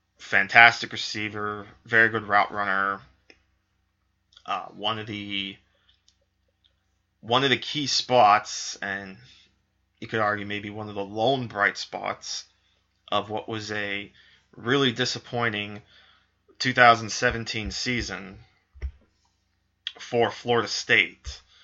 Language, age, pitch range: English, 20-39, 100-115 Hz